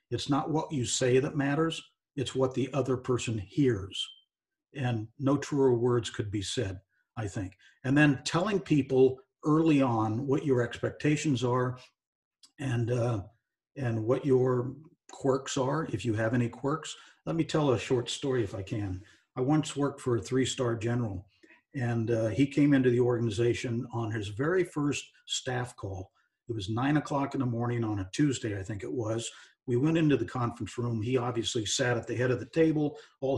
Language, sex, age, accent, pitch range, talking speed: English, male, 50-69, American, 115-140 Hz, 185 wpm